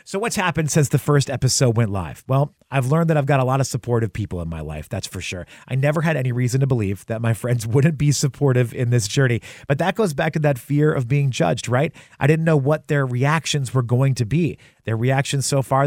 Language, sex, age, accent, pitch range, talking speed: English, male, 30-49, American, 115-145 Hz, 255 wpm